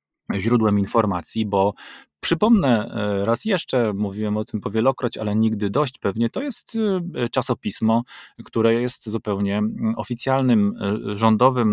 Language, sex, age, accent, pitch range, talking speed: Polish, male, 30-49, native, 105-130 Hz, 115 wpm